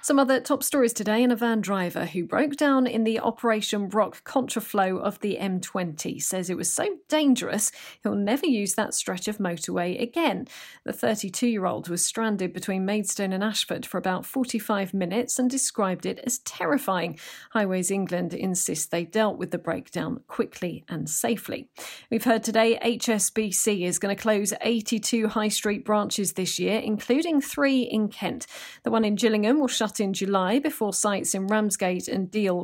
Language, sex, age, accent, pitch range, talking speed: English, female, 40-59, British, 190-245 Hz, 170 wpm